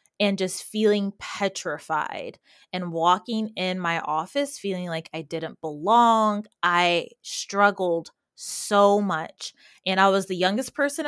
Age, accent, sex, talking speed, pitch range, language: 20-39, American, female, 130 wpm, 175-225 Hz, English